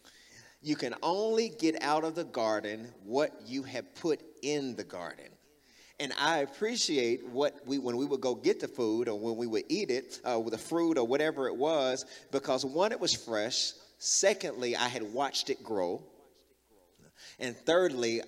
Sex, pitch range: male, 130-195 Hz